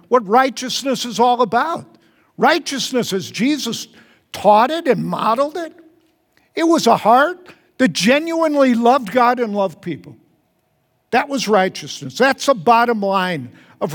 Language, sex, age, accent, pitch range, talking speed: English, male, 50-69, American, 195-270 Hz, 140 wpm